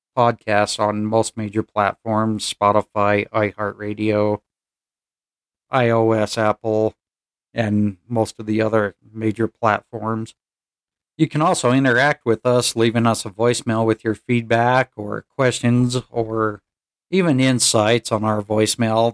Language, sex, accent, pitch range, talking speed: English, male, American, 110-125 Hz, 115 wpm